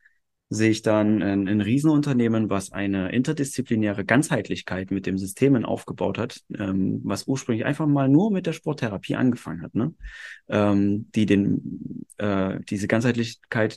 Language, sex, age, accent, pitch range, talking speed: German, male, 30-49, German, 105-125 Hz, 145 wpm